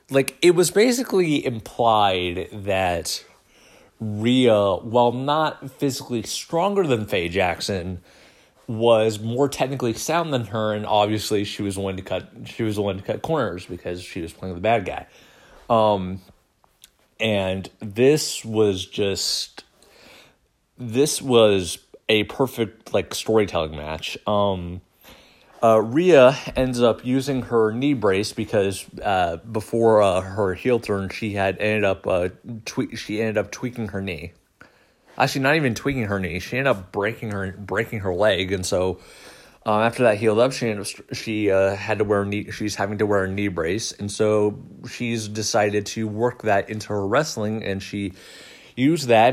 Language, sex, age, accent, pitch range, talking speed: English, male, 30-49, American, 100-125 Hz, 155 wpm